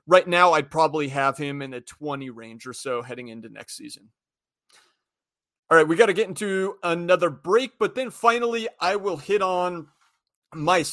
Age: 30-49